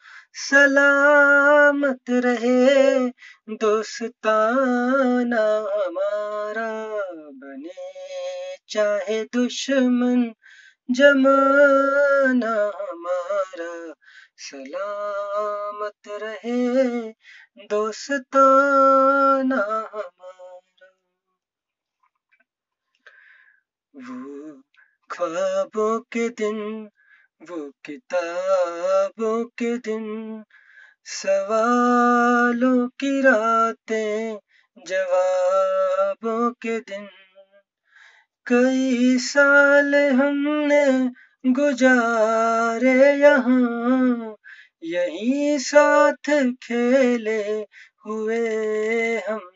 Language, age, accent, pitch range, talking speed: Hindi, 20-39, native, 200-270 Hz, 45 wpm